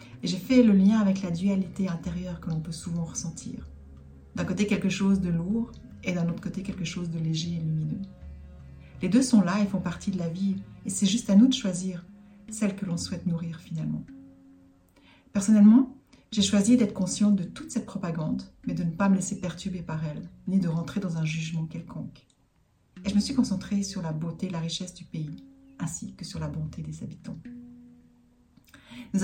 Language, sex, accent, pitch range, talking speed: French, female, French, 160-200 Hz, 205 wpm